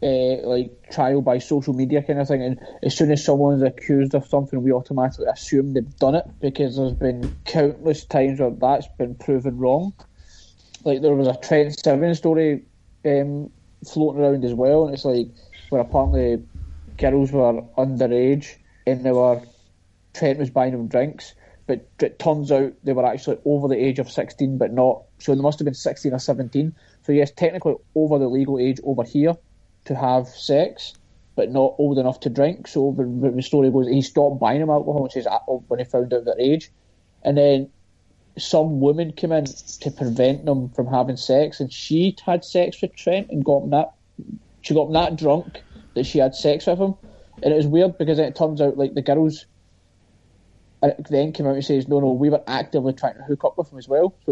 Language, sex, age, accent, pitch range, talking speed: English, male, 20-39, British, 125-145 Hz, 200 wpm